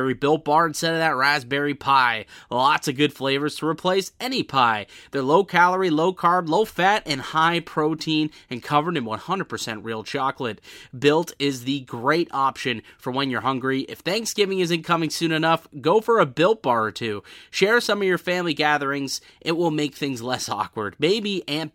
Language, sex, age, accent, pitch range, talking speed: English, male, 30-49, American, 130-170 Hz, 185 wpm